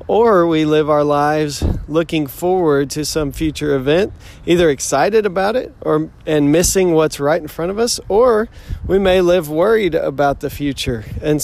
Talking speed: 175 wpm